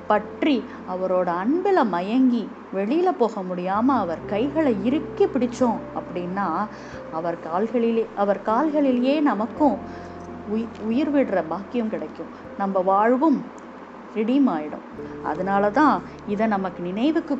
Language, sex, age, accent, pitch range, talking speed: Tamil, female, 20-39, native, 195-270 Hz, 105 wpm